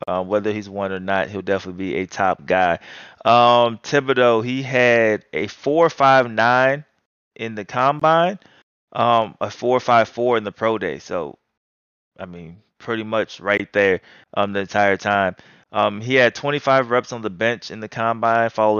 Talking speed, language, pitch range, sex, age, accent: 170 wpm, English, 100-130 Hz, male, 20-39, American